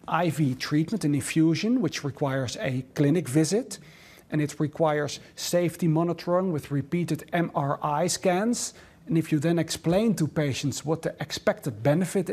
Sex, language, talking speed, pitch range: male, English, 140 wpm, 145-185 Hz